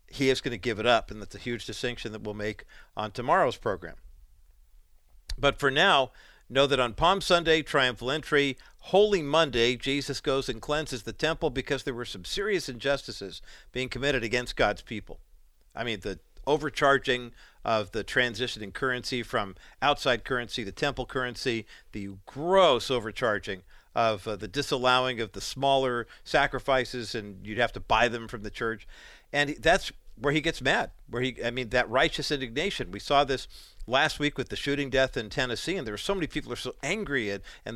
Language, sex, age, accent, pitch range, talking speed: English, male, 50-69, American, 115-140 Hz, 185 wpm